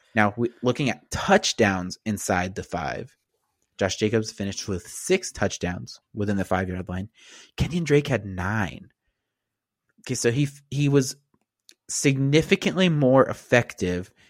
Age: 30-49